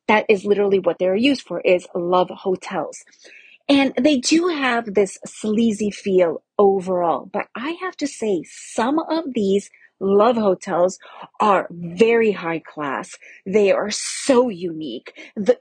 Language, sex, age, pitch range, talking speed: English, female, 30-49, 185-230 Hz, 140 wpm